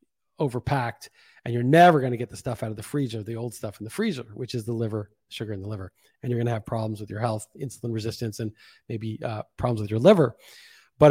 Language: English